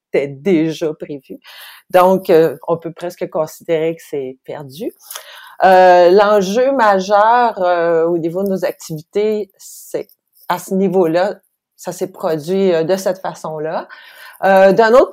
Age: 40-59